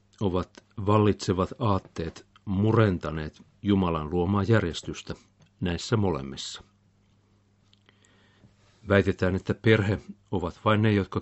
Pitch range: 95-105 Hz